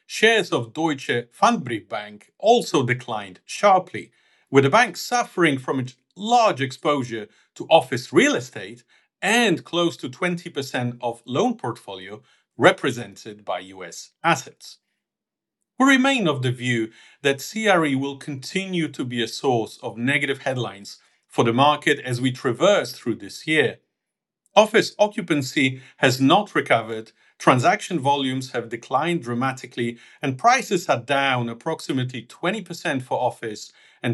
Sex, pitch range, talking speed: male, 120-170 Hz, 130 wpm